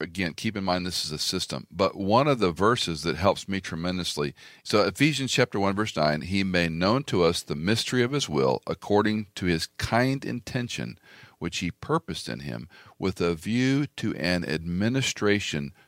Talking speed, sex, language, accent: 185 wpm, male, English, American